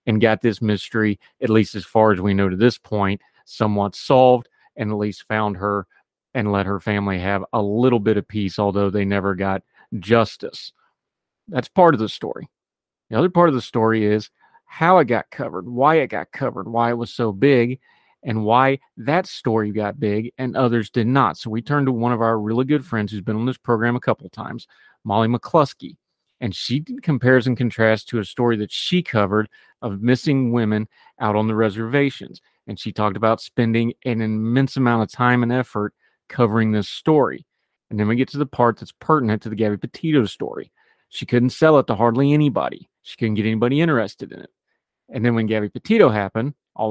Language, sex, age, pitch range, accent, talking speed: English, male, 40-59, 105-130 Hz, American, 205 wpm